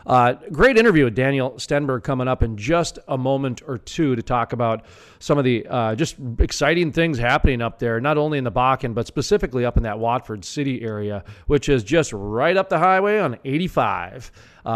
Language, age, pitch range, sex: English, 40-59, 120-150 Hz, male